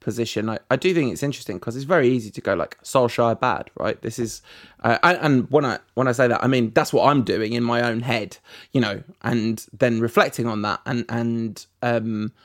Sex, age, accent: male, 20-39, British